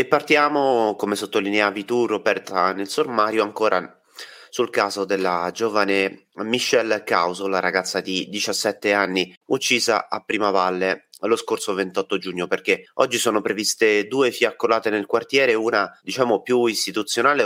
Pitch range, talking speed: 90-110 Hz, 135 wpm